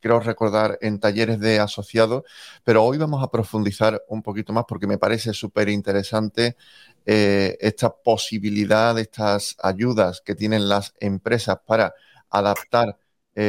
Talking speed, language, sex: 130 wpm, Spanish, male